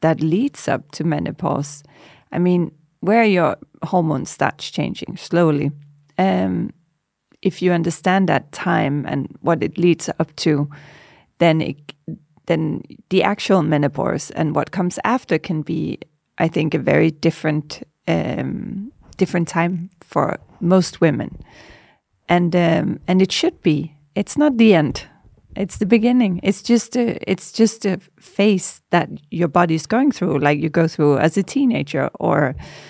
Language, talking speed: Danish, 150 wpm